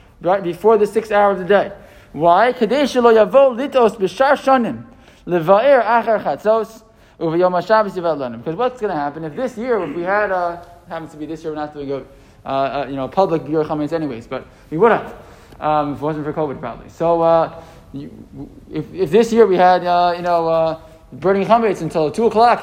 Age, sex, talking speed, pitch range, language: 20-39, male, 165 wpm, 170-225 Hz, English